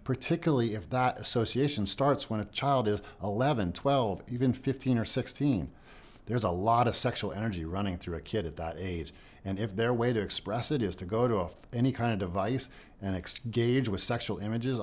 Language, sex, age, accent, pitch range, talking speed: English, male, 50-69, American, 95-125 Hz, 195 wpm